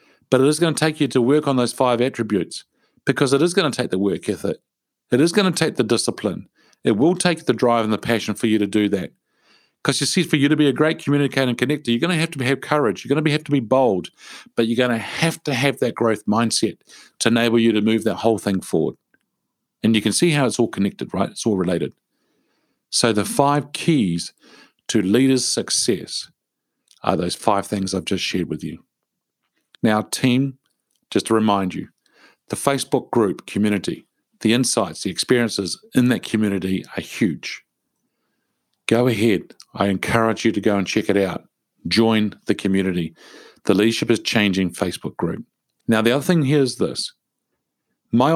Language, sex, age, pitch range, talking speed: English, male, 50-69, 105-140 Hz, 200 wpm